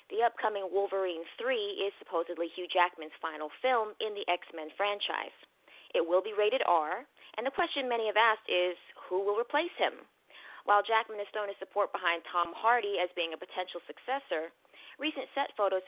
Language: English